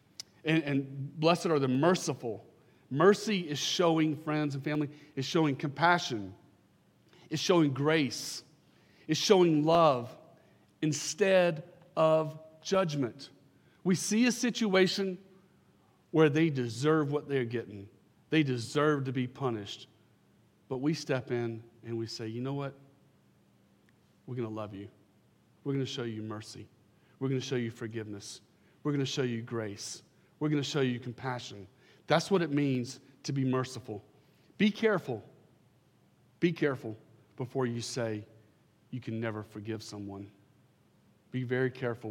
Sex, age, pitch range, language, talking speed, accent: male, 40-59, 115-150 Hz, English, 135 wpm, American